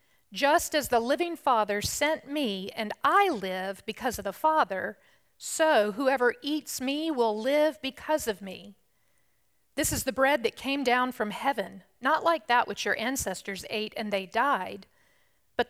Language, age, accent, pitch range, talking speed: English, 50-69, American, 220-290 Hz, 165 wpm